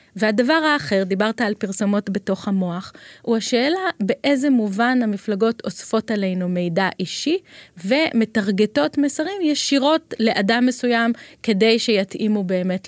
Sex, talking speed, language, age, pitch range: female, 110 wpm, Hebrew, 20-39, 205-265 Hz